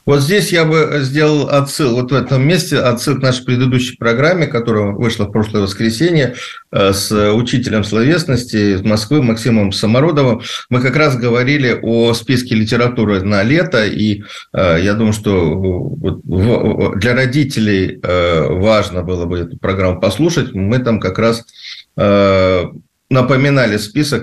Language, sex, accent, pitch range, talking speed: Russian, male, native, 105-135 Hz, 135 wpm